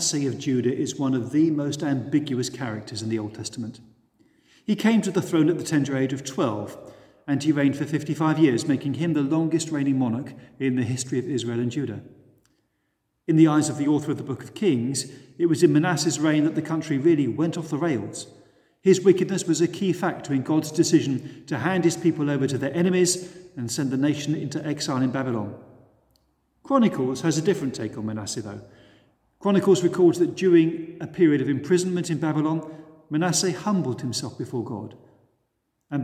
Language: English